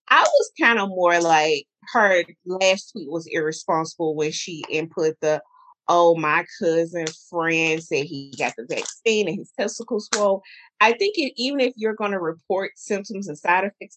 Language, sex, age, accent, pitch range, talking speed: English, female, 30-49, American, 170-235 Hz, 170 wpm